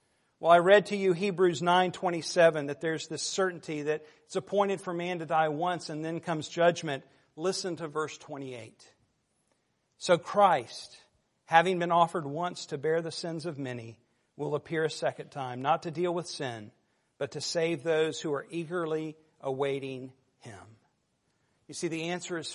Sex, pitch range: male, 145-180 Hz